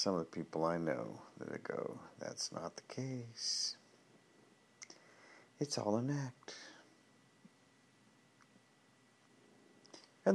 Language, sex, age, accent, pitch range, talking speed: English, male, 50-69, American, 85-110 Hz, 95 wpm